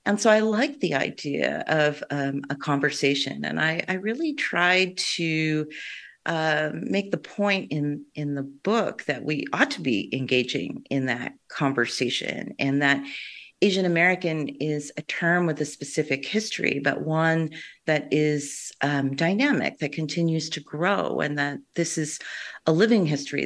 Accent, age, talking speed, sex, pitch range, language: American, 40-59, 155 wpm, female, 145-180 Hz, English